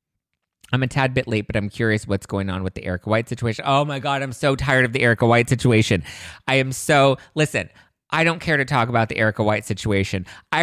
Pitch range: 100-120 Hz